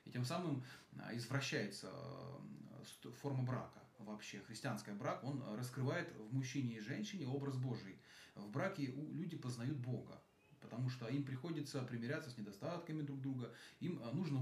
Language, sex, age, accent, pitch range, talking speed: Russian, male, 30-49, native, 115-150 Hz, 135 wpm